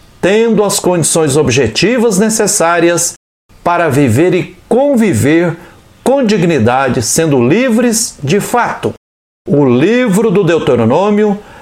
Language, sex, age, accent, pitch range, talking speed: Portuguese, male, 60-79, Brazilian, 155-215 Hz, 100 wpm